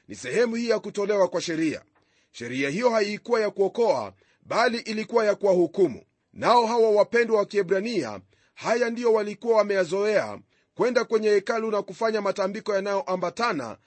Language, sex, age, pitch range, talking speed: Swahili, male, 40-59, 190-230 Hz, 145 wpm